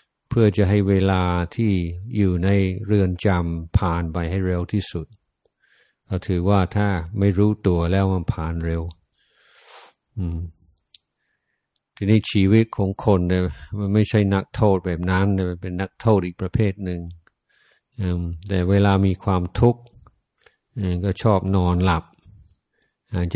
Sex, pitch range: male, 90-100 Hz